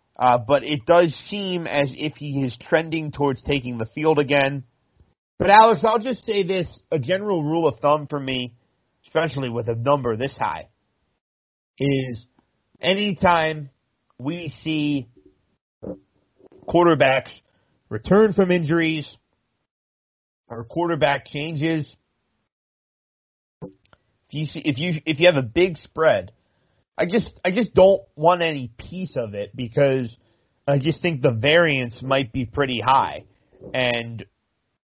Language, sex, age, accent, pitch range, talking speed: English, male, 30-49, American, 125-165 Hz, 130 wpm